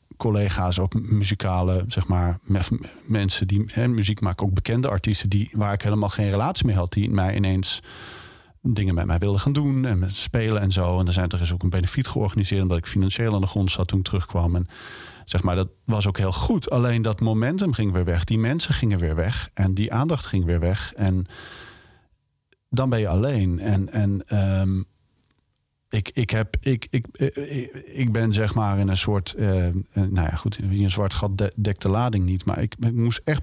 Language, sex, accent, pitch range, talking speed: Dutch, male, Dutch, 95-110 Hz, 210 wpm